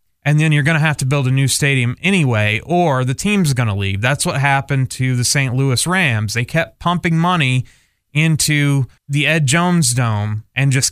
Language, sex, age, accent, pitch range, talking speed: English, male, 20-39, American, 125-155 Hz, 205 wpm